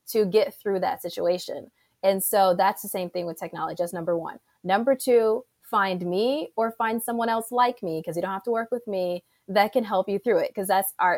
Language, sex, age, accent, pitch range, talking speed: English, female, 20-39, American, 190-255 Hz, 230 wpm